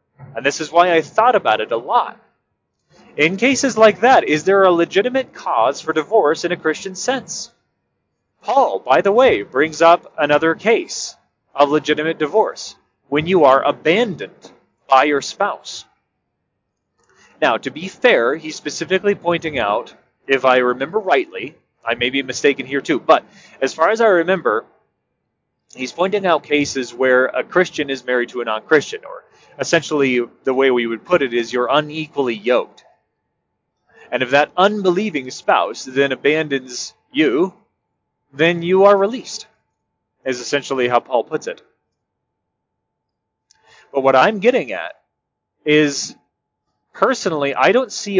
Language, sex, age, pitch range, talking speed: English, male, 30-49, 135-190 Hz, 150 wpm